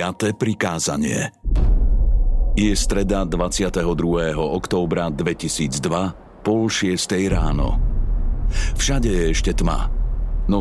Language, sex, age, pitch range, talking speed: Slovak, male, 50-69, 90-110 Hz, 85 wpm